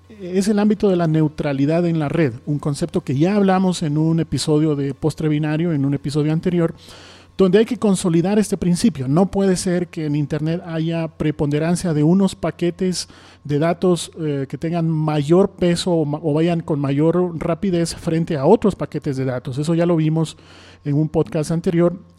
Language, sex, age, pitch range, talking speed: Spanish, male, 40-59, 150-190 Hz, 185 wpm